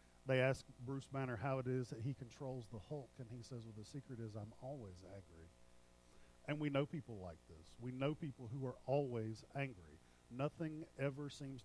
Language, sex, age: English, male, 40-59